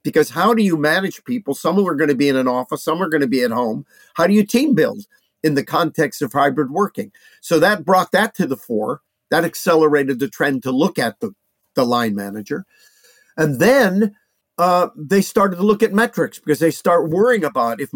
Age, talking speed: 50-69, 215 wpm